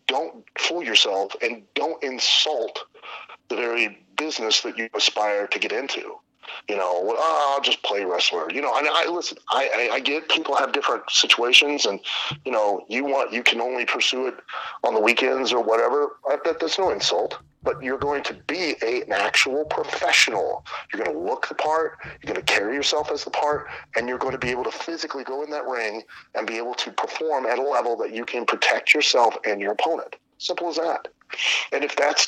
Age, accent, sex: 30-49, American, male